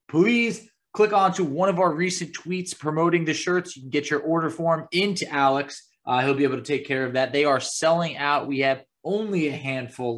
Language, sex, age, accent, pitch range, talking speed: English, male, 20-39, American, 140-185 Hz, 225 wpm